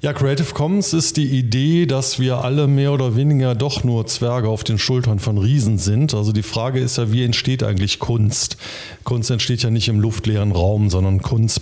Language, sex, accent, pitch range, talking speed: German, male, German, 105-130 Hz, 200 wpm